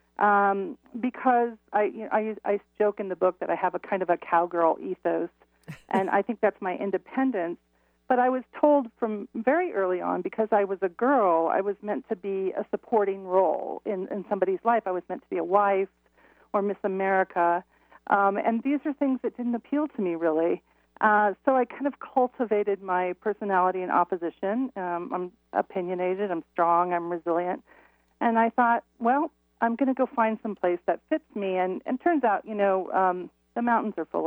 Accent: American